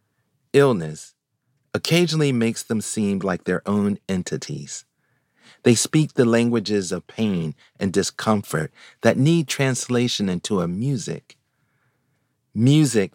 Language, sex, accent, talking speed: English, male, American, 110 wpm